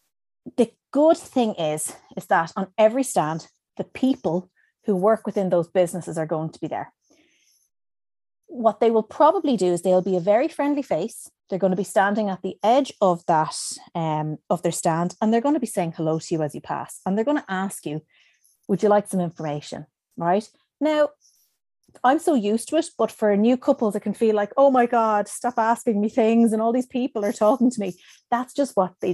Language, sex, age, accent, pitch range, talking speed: English, female, 30-49, Irish, 180-240 Hz, 210 wpm